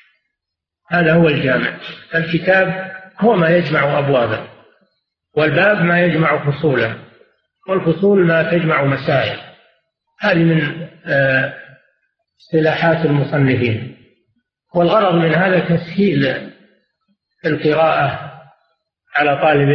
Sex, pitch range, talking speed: male, 150-185 Hz, 90 wpm